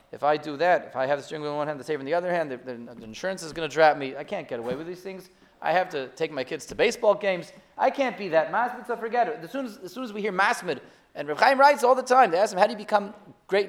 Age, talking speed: 30-49, 335 wpm